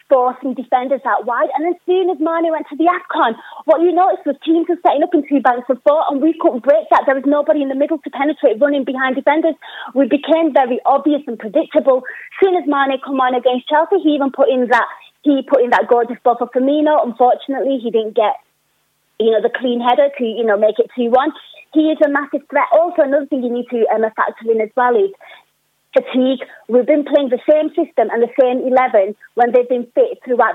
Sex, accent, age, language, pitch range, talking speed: female, British, 30-49, English, 230-290 Hz, 230 wpm